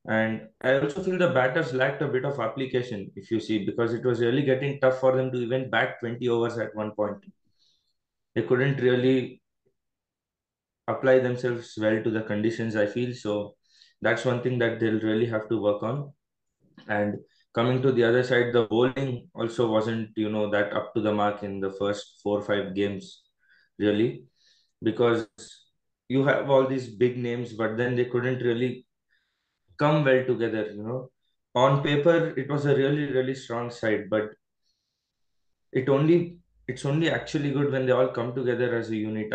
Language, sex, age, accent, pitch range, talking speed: English, male, 20-39, Indian, 110-130 Hz, 180 wpm